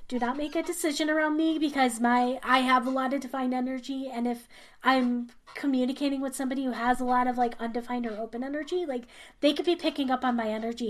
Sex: female